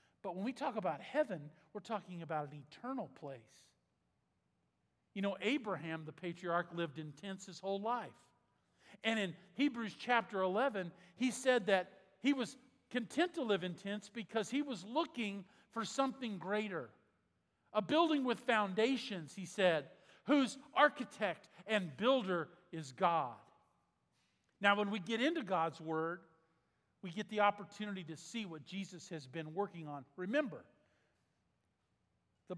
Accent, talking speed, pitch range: American, 145 wpm, 160-230 Hz